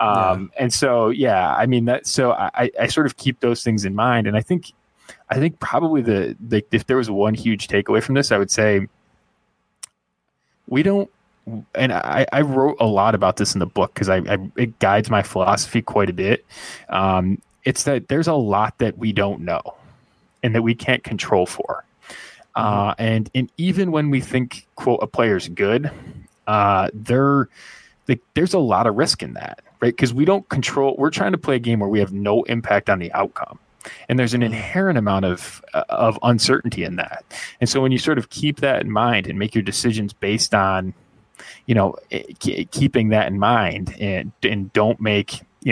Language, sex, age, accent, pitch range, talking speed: English, male, 20-39, American, 100-130 Hz, 205 wpm